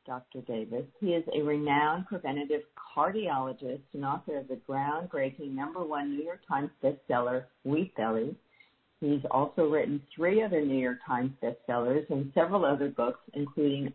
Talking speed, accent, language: 150 wpm, American, English